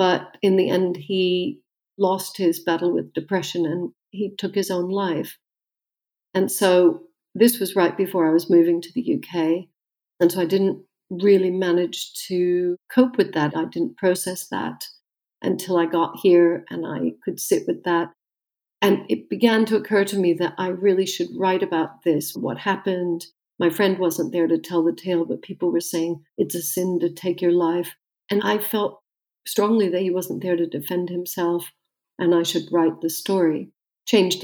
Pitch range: 170-195 Hz